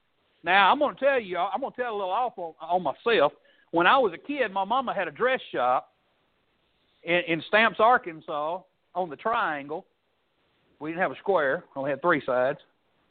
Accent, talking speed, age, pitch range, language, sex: American, 205 wpm, 60-79, 200-290 Hz, English, male